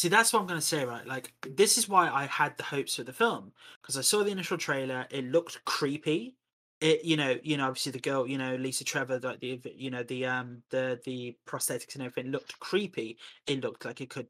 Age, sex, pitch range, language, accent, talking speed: 20-39, male, 125-155 Hz, English, British, 240 wpm